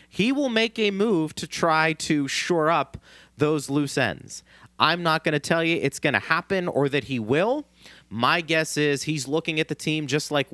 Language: English